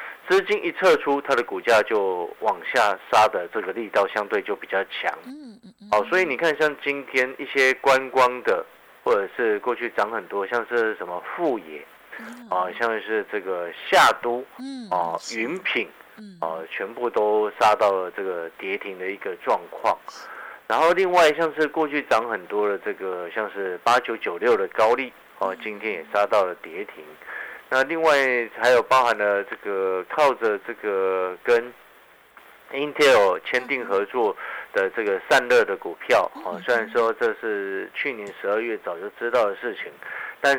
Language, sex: Chinese, male